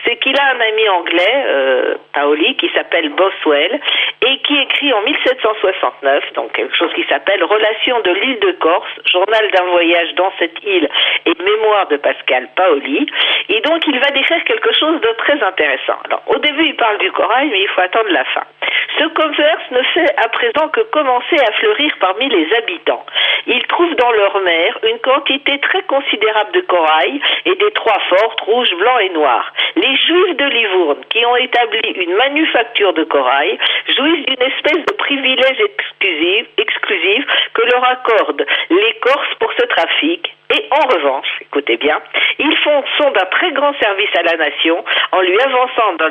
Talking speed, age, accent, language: 175 wpm, 50-69, French, French